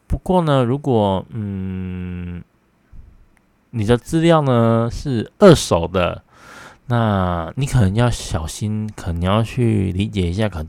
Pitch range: 95-125 Hz